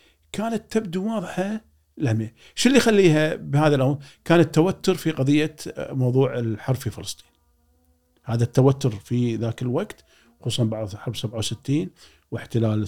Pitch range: 105-160 Hz